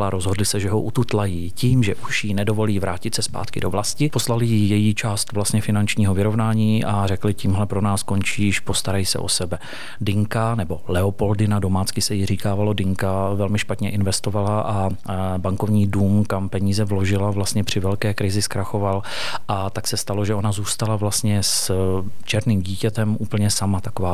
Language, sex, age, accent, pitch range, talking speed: Czech, male, 30-49, native, 100-110 Hz, 170 wpm